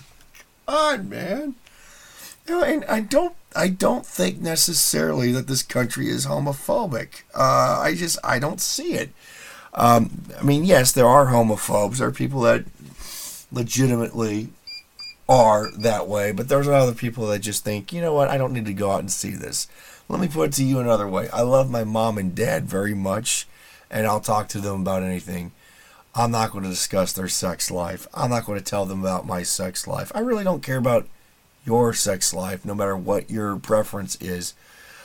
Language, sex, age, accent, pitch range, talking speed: English, male, 40-59, American, 95-130 Hz, 185 wpm